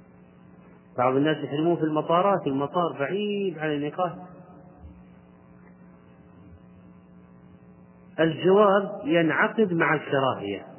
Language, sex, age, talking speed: Arabic, male, 30-49, 70 wpm